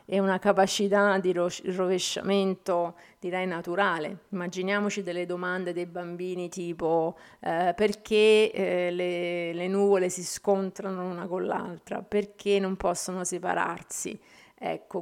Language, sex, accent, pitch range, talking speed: Italian, female, native, 180-205 Hz, 115 wpm